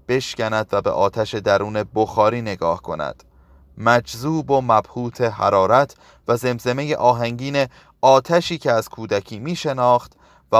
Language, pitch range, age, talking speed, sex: Persian, 110-145 Hz, 30-49, 120 wpm, male